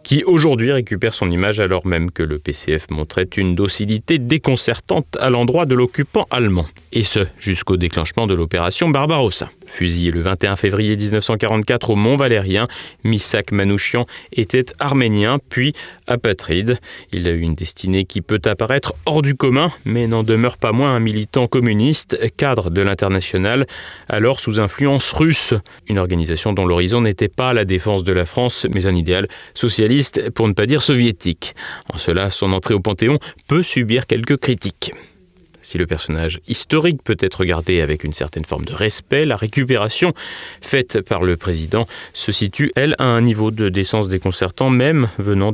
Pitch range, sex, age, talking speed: 95-125 Hz, male, 30-49, 165 wpm